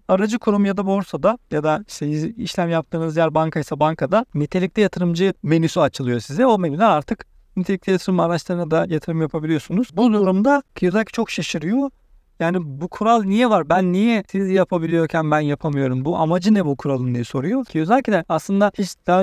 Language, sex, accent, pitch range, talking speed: Turkish, male, native, 155-195 Hz, 170 wpm